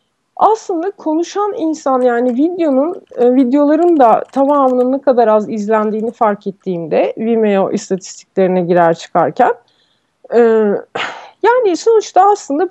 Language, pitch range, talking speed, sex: Turkish, 235-315 Hz, 110 wpm, female